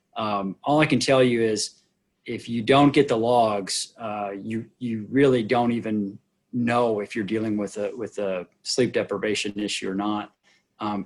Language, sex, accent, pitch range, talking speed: English, male, American, 105-130 Hz, 180 wpm